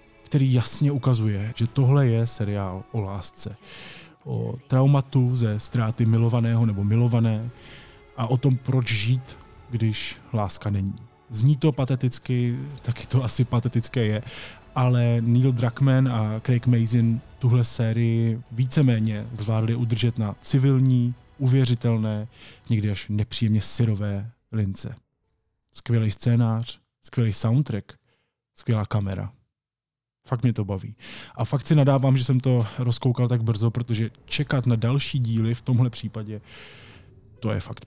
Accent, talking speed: native, 130 wpm